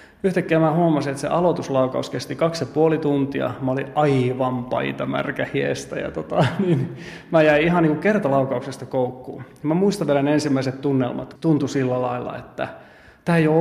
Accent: native